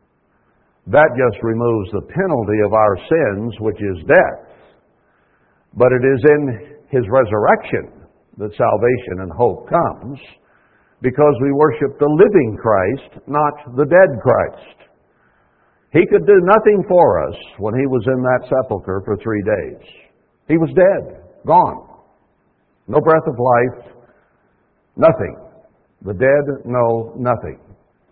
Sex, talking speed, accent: male, 130 wpm, American